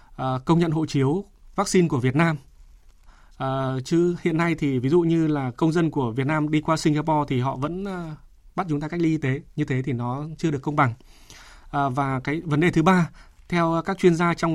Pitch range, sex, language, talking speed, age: 135-175 Hz, male, Vietnamese, 220 wpm, 20-39